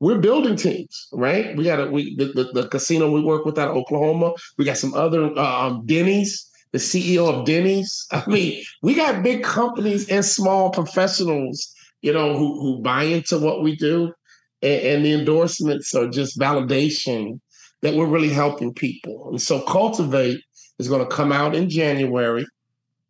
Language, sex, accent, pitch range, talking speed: English, male, American, 135-165 Hz, 175 wpm